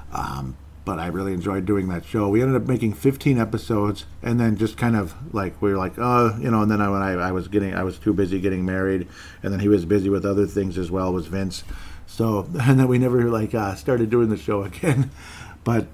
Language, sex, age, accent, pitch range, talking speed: English, male, 50-69, American, 90-115 Hz, 240 wpm